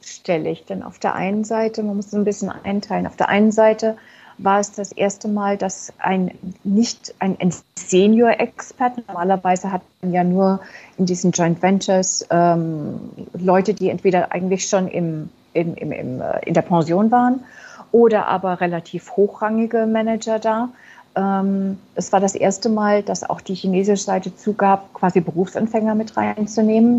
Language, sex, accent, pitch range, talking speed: German, female, German, 185-215 Hz, 160 wpm